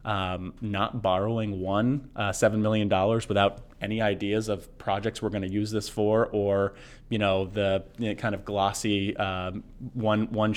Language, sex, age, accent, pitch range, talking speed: English, male, 30-49, American, 100-115 Hz, 165 wpm